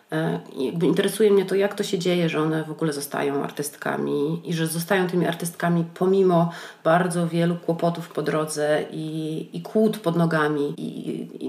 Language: Polish